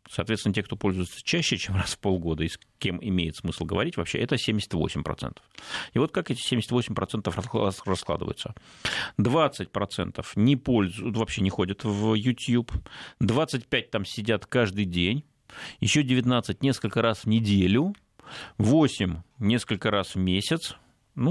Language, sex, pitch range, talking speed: Russian, male, 90-120 Hz, 140 wpm